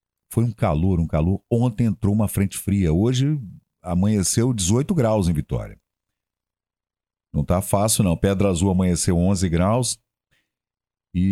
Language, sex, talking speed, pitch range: Portuguese, male, 140 wpm, 90-115 Hz